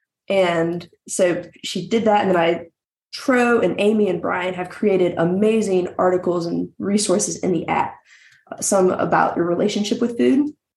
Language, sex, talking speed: English, female, 155 wpm